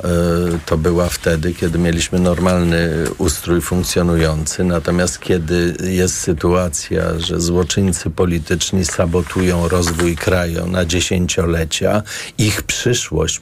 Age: 40-59